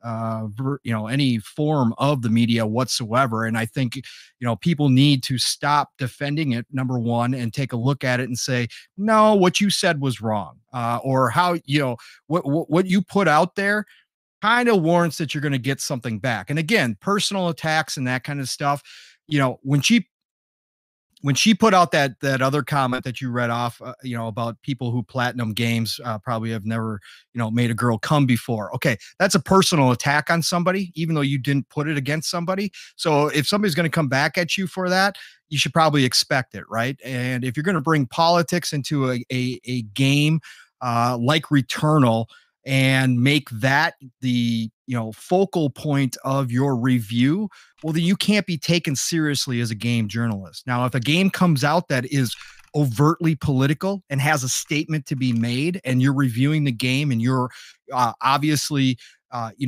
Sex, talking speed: male, 200 wpm